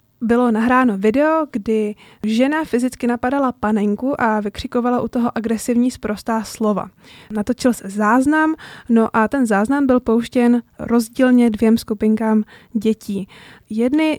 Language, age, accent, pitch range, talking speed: Czech, 20-39, native, 215-245 Hz, 125 wpm